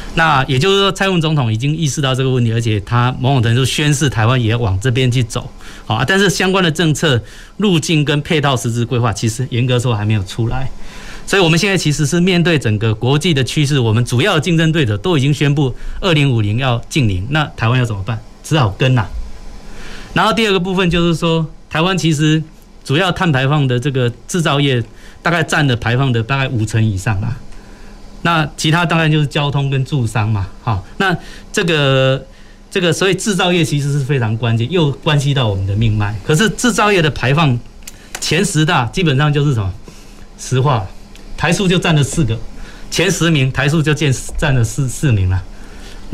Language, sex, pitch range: Chinese, male, 115-160 Hz